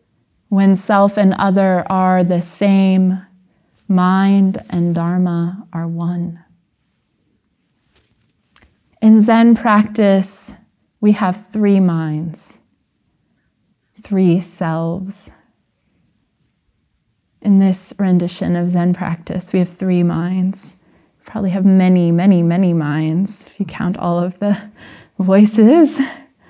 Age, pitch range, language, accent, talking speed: 20-39, 175-200 Hz, English, American, 100 wpm